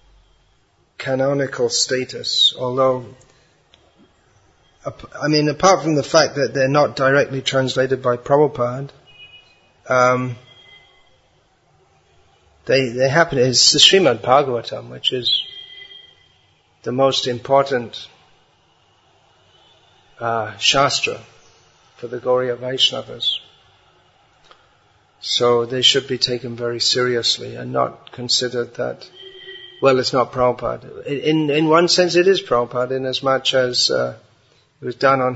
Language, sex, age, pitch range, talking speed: English, male, 40-59, 125-140 Hz, 110 wpm